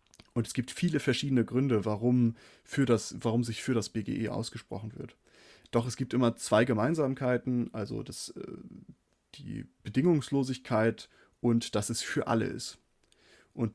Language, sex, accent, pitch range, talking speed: German, male, German, 110-125 Hz, 145 wpm